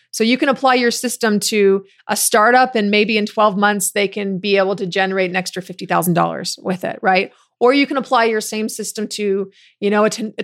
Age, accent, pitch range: 30-49, American, 195-220 Hz